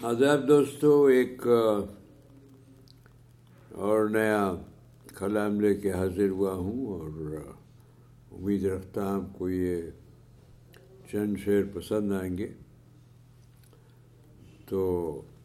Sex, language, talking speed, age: male, Urdu, 95 wpm, 60-79